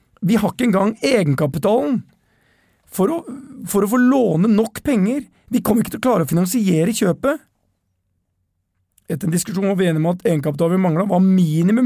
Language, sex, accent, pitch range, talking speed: English, male, Swedish, 140-195 Hz, 155 wpm